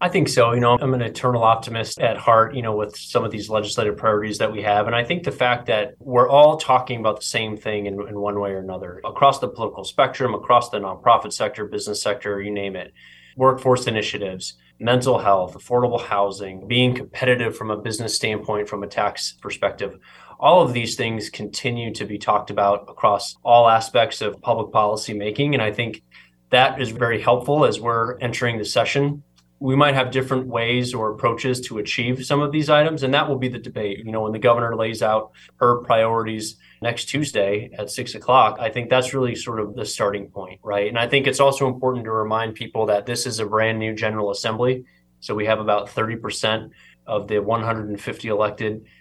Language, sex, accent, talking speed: English, male, American, 205 wpm